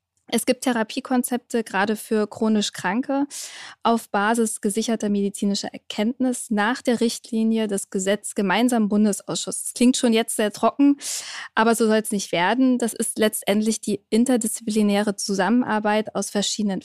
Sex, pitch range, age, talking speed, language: female, 205-245 Hz, 20-39, 145 wpm, German